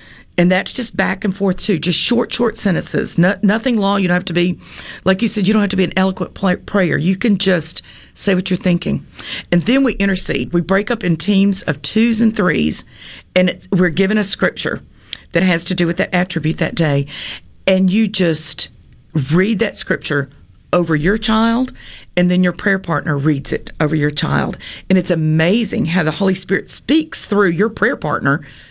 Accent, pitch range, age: American, 170-220 Hz, 50-69